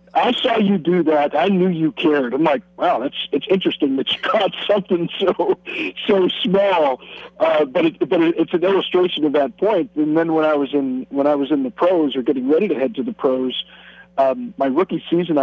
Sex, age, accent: male, 50-69, American